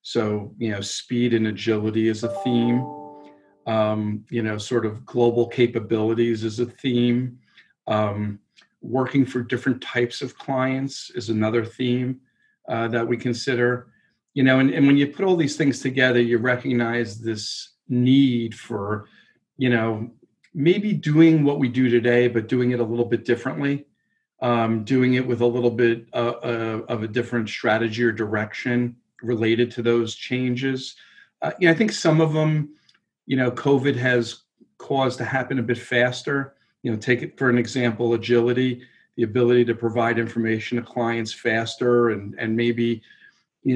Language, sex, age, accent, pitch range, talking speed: English, male, 40-59, American, 115-125 Hz, 165 wpm